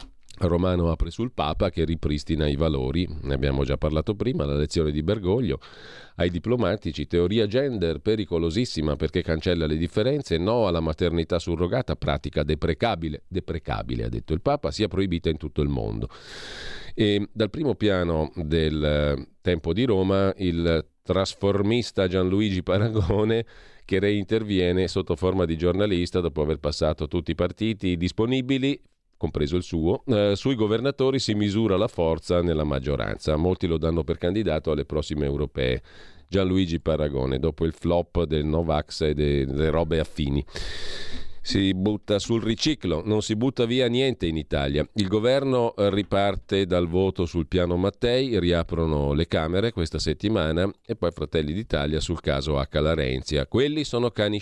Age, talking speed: 40-59, 145 wpm